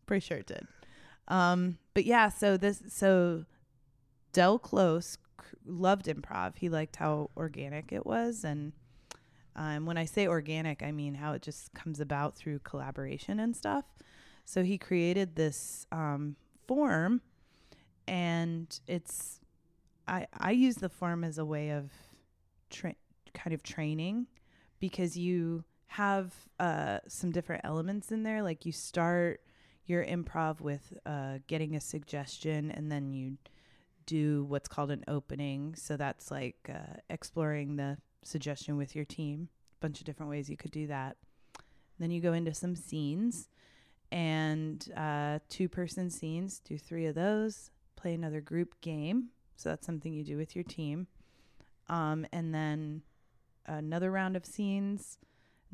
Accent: American